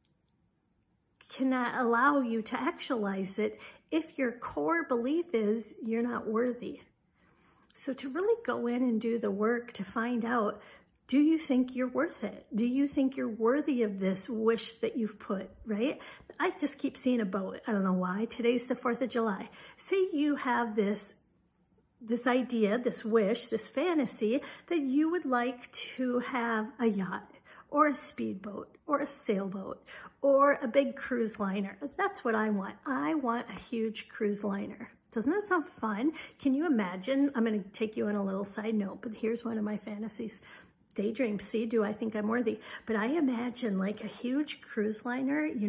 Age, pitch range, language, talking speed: 50-69, 215-270 Hz, English, 180 wpm